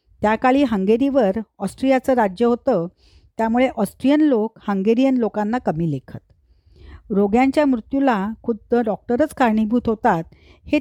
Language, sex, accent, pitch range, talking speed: Marathi, female, native, 195-260 Hz, 105 wpm